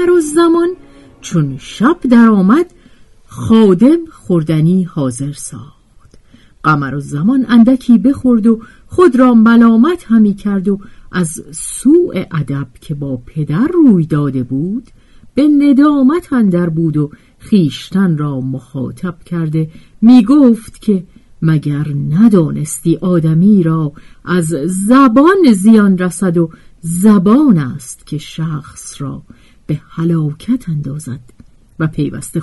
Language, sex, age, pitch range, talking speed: Persian, female, 50-69, 150-235 Hz, 115 wpm